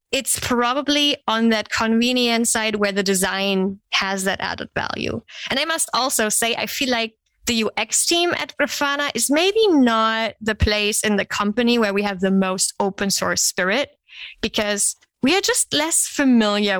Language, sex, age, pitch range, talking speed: English, female, 20-39, 205-250 Hz, 170 wpm